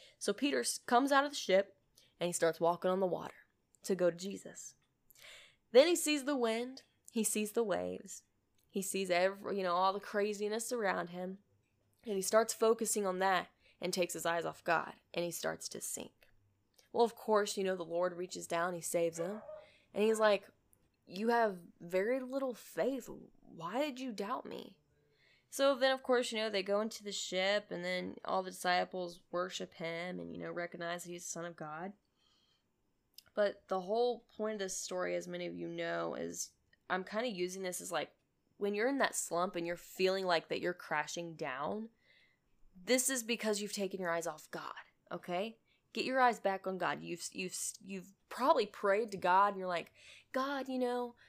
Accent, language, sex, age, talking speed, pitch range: American, English, female, 10-29, 200 wpm, 175-225 Hz